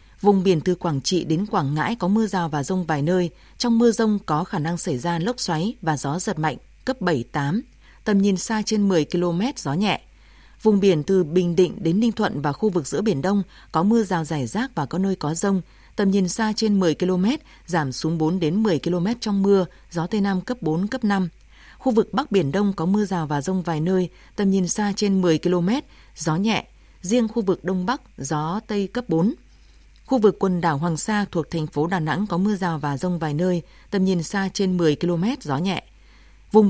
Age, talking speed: 20-39, 225 wpm